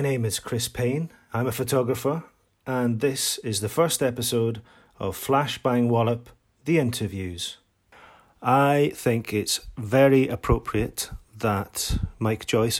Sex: male